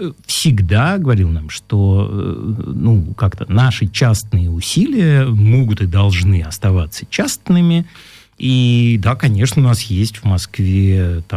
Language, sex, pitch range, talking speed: Russian, male, 95-130 Hz, 110 wpm